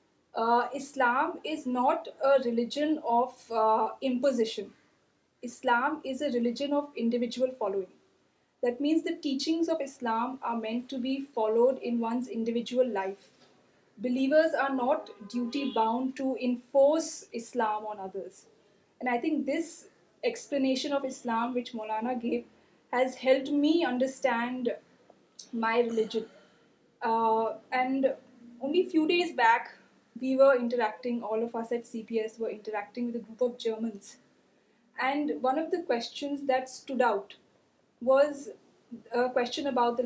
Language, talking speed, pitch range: Urdu, 135 wpm, 230-275 Hz